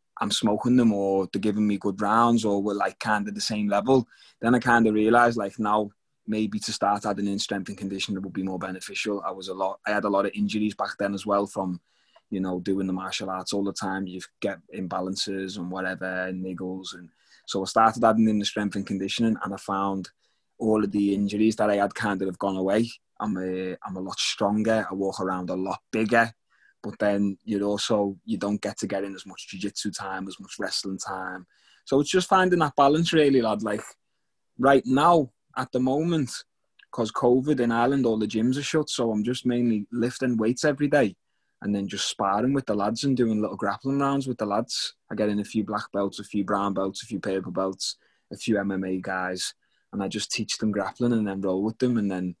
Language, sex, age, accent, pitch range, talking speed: English, male, 20-39, British, 95-115 Hz, 230 wpm